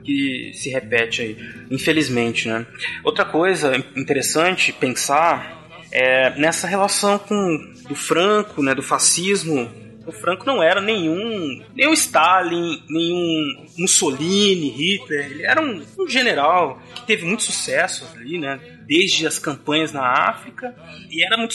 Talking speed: 135 wpm